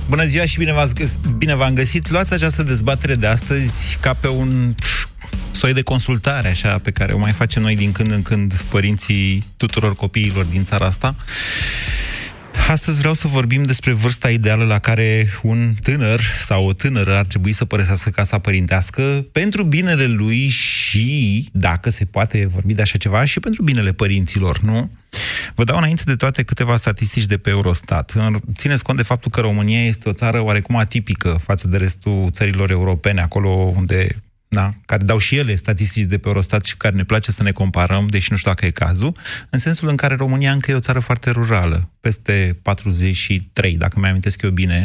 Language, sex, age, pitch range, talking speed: Romanian, male, 30-49, 100-130 Hz, 185 wpm